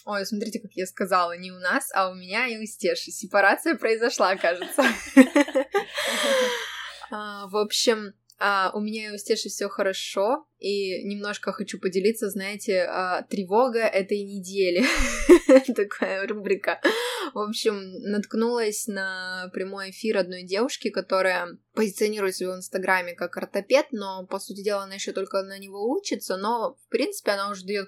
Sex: female